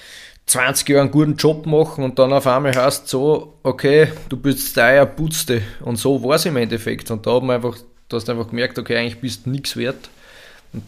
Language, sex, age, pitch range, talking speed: German, male, 20-39, 120-140 Hz, 210 wpm